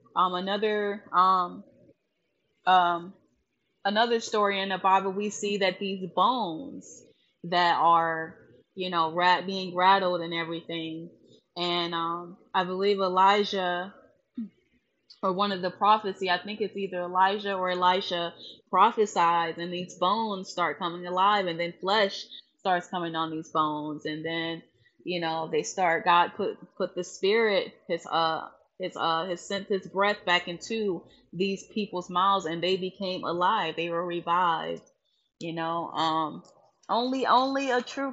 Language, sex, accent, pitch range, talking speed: English, female, American, 175-210 Hz, 145 wpm